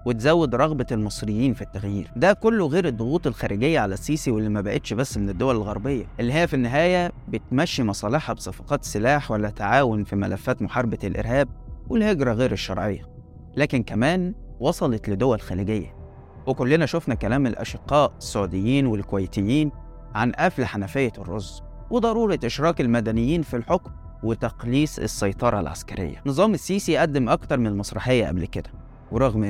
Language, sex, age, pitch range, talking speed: Arabic, male, 20-39, 105-150 Hz, 140 wpm